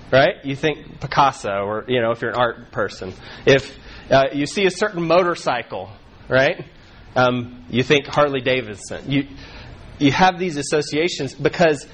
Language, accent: English, American